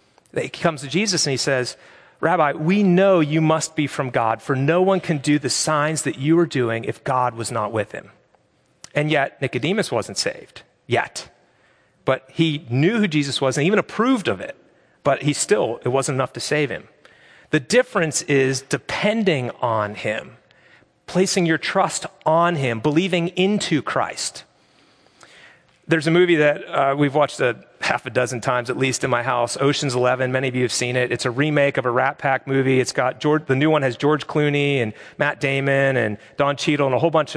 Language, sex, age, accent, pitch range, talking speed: English, male, 40-59, American, 130-165 Hz, 200 wpm